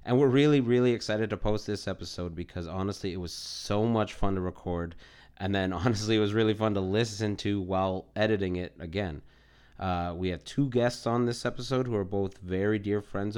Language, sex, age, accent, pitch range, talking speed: English, male, 30-49, American, 95-120 Hz, 205 wpm